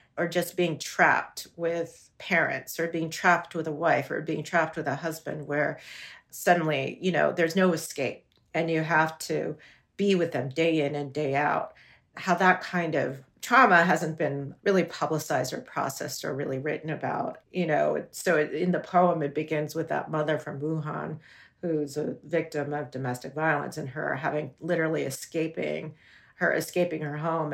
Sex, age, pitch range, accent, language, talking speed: female, 40-59, 150-170 Hz, American, English, 175 wpm